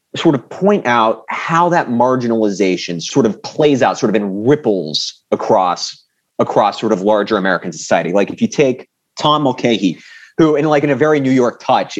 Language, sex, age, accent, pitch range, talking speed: English, male, 30-49, American, 105-145 Hz, 185 wpm